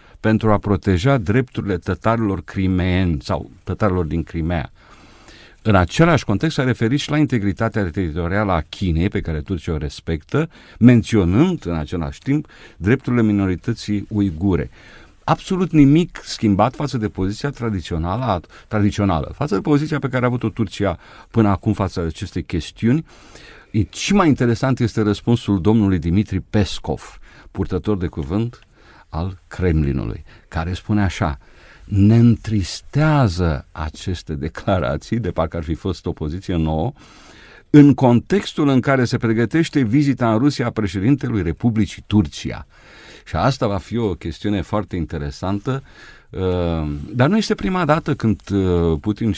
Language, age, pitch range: Romanian, 50-69, 85-120 Hz